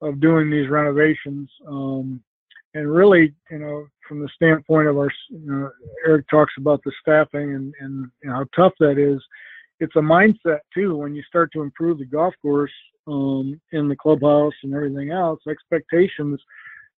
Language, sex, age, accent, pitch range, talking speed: English, male, 50-69, American, 140-155 Hz, 175 wpm